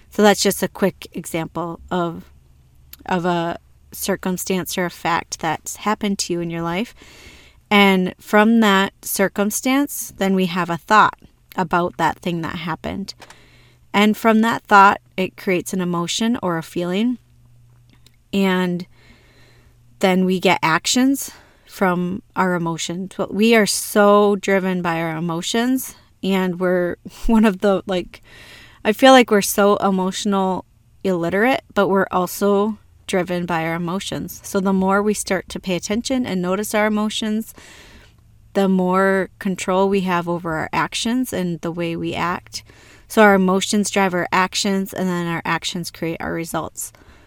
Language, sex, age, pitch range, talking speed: English, female, 30-49, 170-205 Hz, 150 wpm